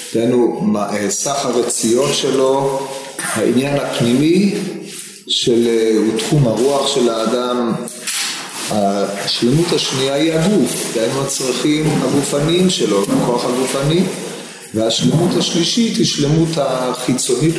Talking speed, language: 90 wpm, Hebrew